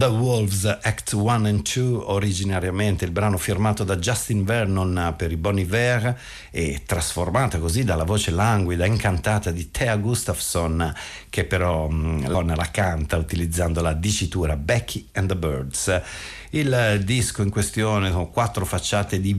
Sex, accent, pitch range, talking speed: male, native, 85-105 Hz, 140 wpm